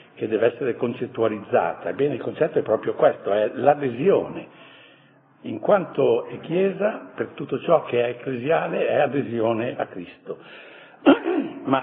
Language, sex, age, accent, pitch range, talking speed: Italian, male, 60-79, native, 120-170 Hz, 135 wpm